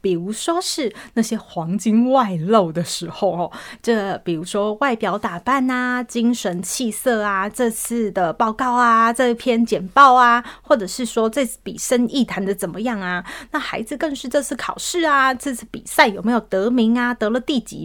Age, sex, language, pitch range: 20-39, female, Chinese, 195-255 Hz